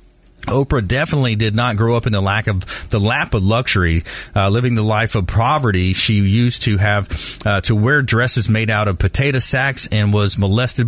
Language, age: English, 30-49